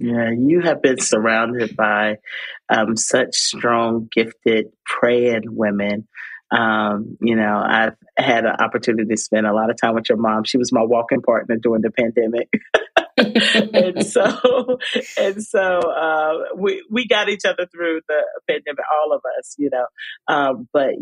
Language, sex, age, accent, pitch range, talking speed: English, male, 40-59, American, 115-185 Hz, 160 wpm